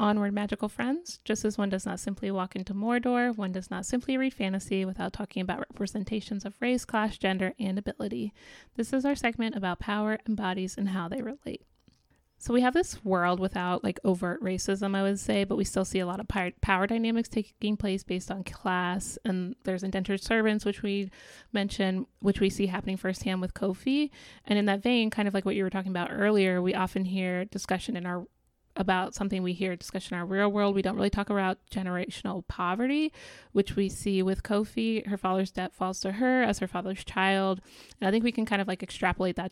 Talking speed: 215 wpm